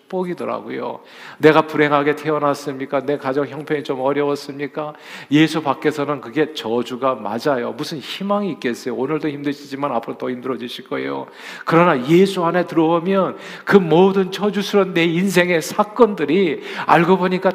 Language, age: Korean, 40-59